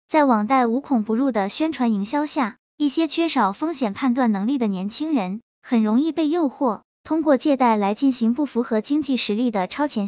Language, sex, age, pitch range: Chinese, male, 10-29, 225-290 Hz